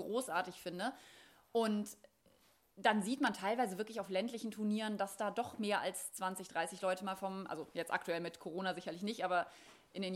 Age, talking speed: 30-49, 185 wpm